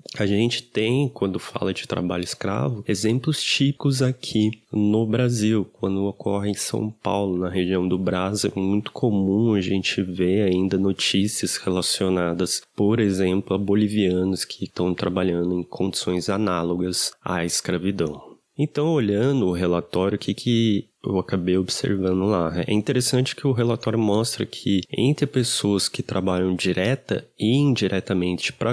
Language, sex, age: Portuguese, male, 20-39